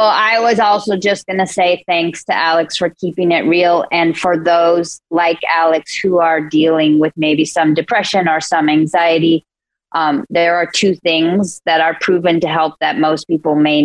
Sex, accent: female, American